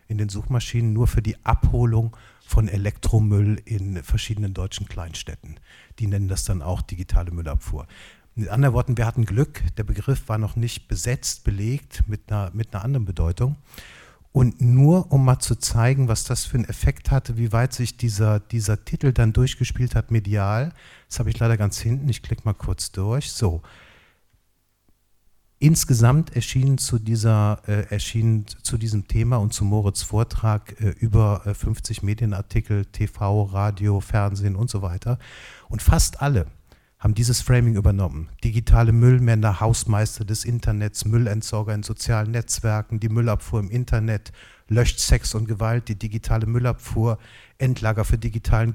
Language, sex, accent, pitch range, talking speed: German, male, German, 105-120 Hz, 150 wpm